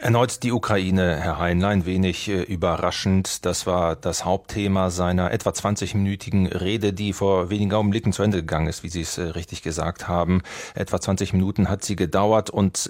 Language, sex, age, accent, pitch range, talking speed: German, male, 30-49, German, 90-105 Hz, 170 wpm